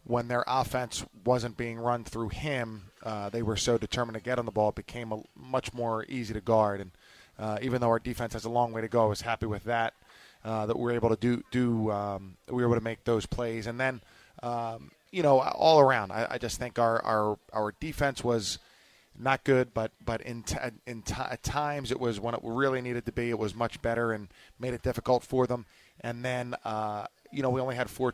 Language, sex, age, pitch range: English, male, 20-39, 110-125 Hz